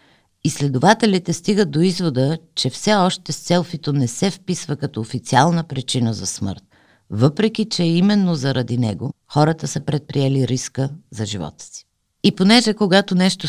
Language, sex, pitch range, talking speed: Bulgarian, female, 120-165 Hz, 150 wpm